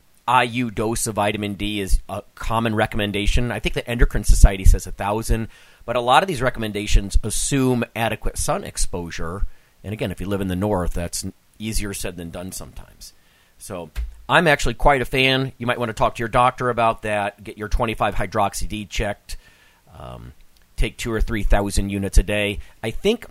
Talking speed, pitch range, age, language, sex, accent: 190 wpm, 95-125 Hz, 40-59, English, male, American